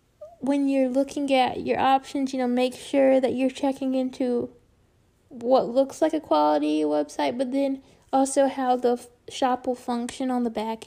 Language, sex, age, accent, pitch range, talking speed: English, female, 10-29, American, 250-285 Hz, 170 wpm